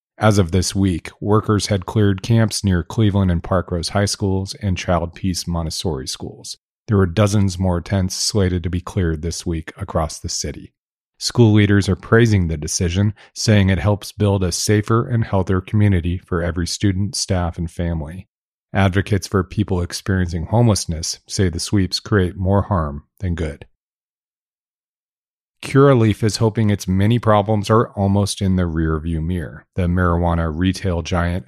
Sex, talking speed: male, 160 wpm